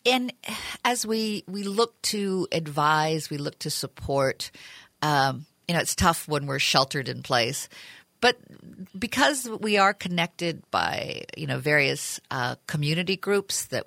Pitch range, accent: 150-200 Hz, American